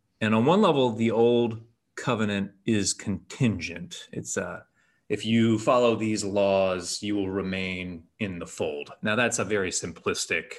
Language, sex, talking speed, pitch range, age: English, male, 155 wpm, 100-130 Hz, 30-49